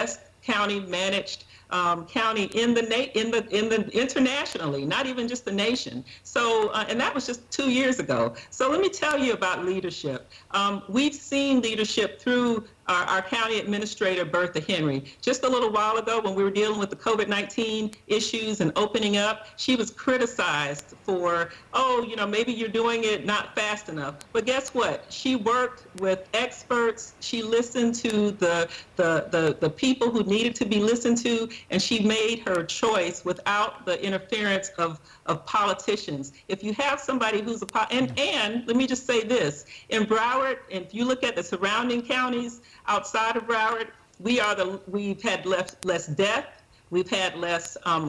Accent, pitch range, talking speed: American, 185-235 Hz, 180 wpm